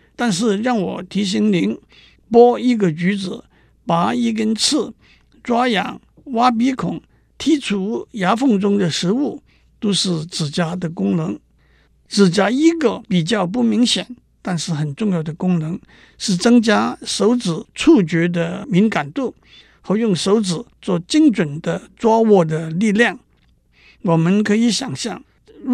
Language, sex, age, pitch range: Chinese, male, 60-79, 170-230 Hz